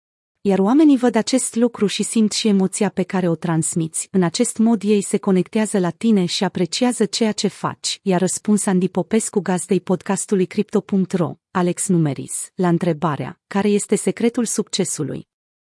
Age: 30-49